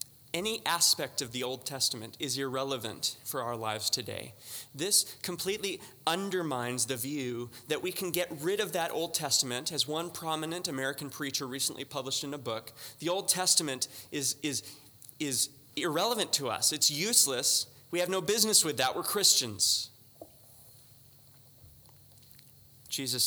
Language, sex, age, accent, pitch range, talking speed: English, male, 20-39, American, 120-145 Hz, 145 wpm